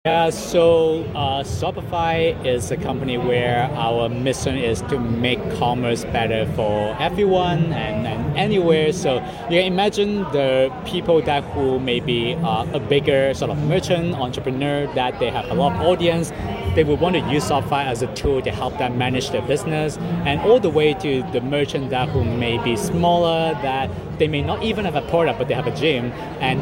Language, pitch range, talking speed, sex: Italian, 130-165 Hz, 190 wpm, male